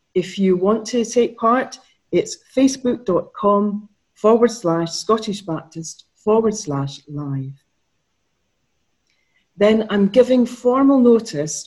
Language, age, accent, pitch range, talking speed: English, 40-59, British, 160-215 Hz, 100 wpm